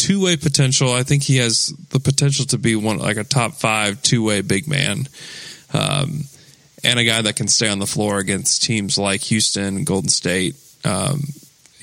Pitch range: 110-150 Hz